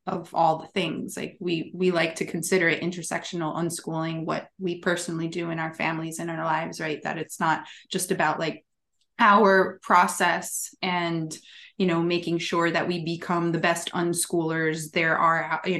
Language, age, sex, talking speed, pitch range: English, 20-39, female, 175 wpm, 170-190 Hz